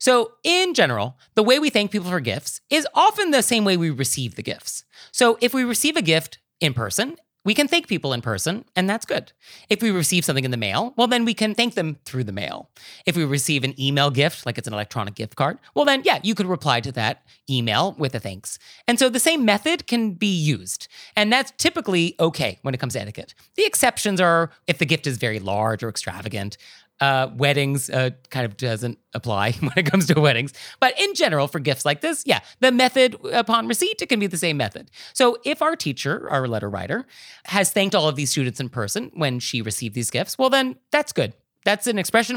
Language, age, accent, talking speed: English, 30-49, American, 230 wpm